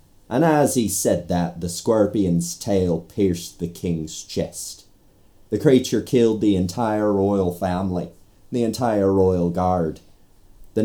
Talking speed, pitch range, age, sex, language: 135 wpm, 90-105 Hz, 30-49, male, English